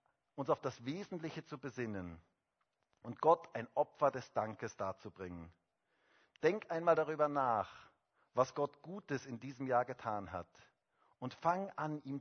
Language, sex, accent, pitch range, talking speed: German, male, German, 120-170 Hz, 145 wpm